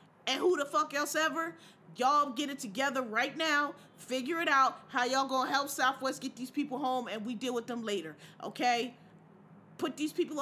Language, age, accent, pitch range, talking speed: English, 30-49, American, 230-325 Hz, 195 wpm